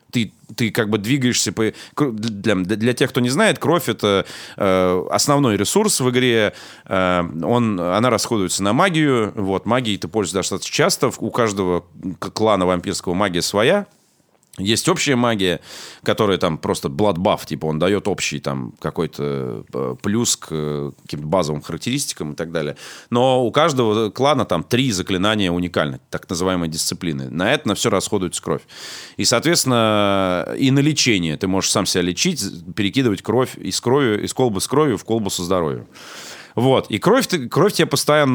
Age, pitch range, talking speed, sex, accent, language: 30-49, 90-125 Hz, 155 wpm, male, native, Russian